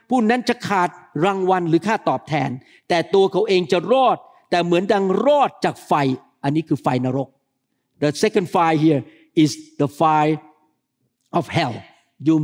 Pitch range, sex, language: 150-195 Hz, male, Thai